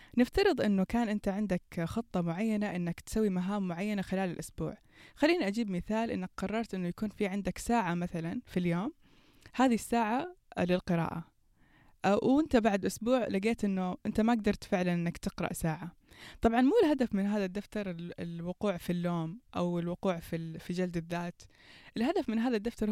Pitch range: 175-230 Hz